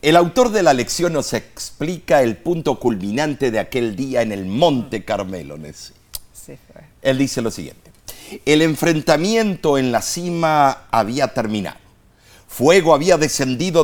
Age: 50-69